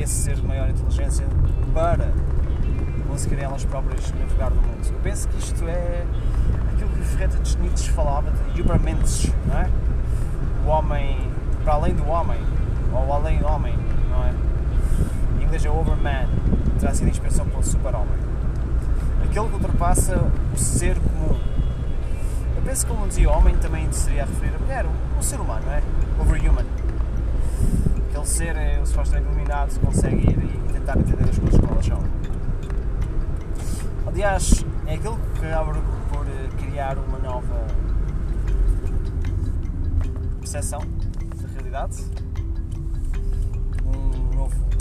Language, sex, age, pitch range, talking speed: Portuguese, male, 20-39, 65-85 Hz, 135 wpm